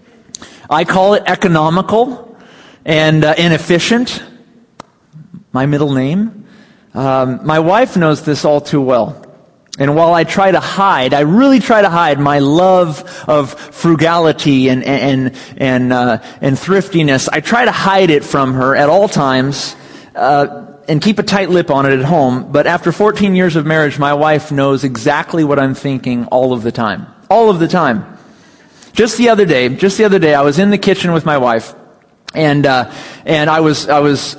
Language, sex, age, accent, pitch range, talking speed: English, male, 40-59, American, 140-185 Hz, 180 wpm